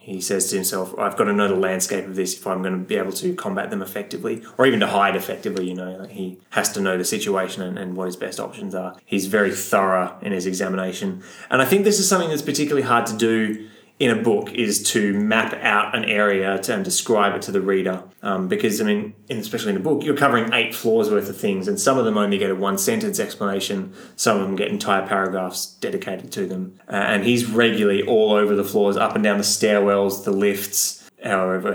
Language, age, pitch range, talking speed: English, 20-39, 95-130 Hz, 230 wpm